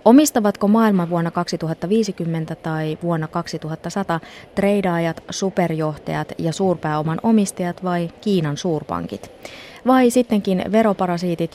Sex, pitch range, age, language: female, 155-205 Hz, 20-39, Finnish